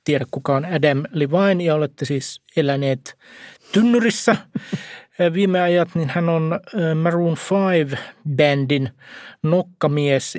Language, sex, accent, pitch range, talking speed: Finnish, male, native, 150-180 Hz, 105 wpm